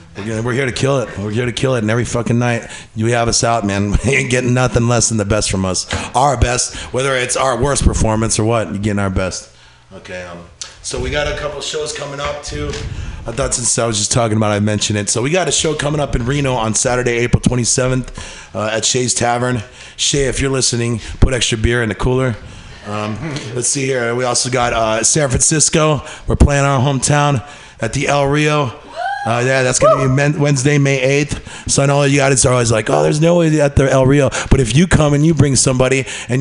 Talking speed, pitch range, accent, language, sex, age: 240 wpm, 105-135 Hz, American, English, male, 30-49